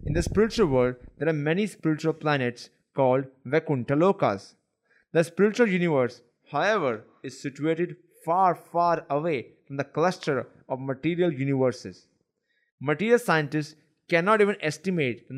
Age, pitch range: 20-39, 135-175 Hz